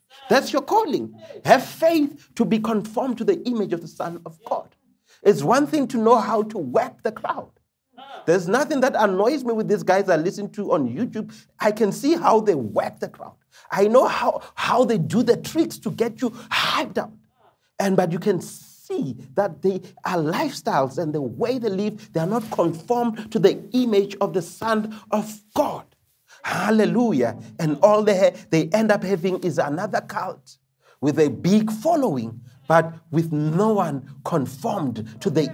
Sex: male